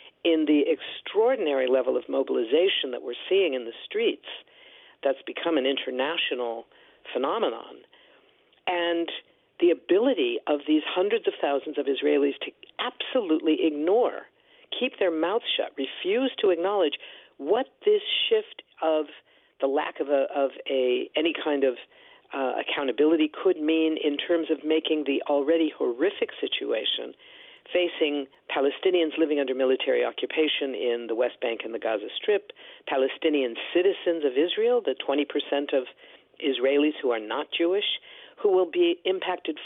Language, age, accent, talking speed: English, 50-69, American, 135 wpm